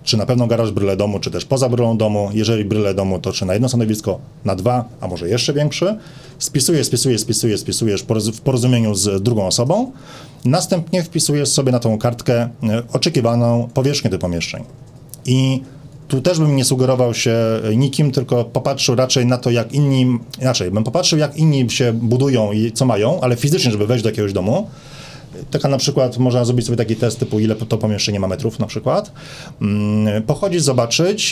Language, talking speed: Polish, 180 wpm